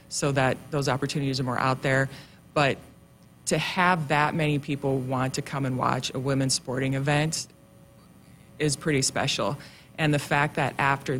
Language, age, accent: English, 20-39, American